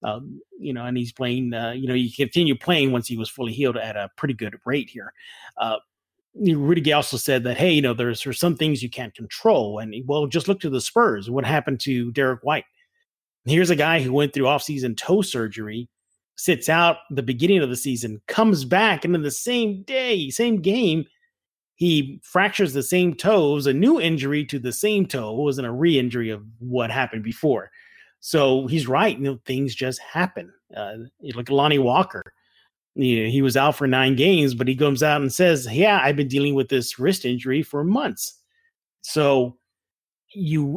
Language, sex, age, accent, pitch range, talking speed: English, male, 30-49, American, 125-170 Hz, 195 wpm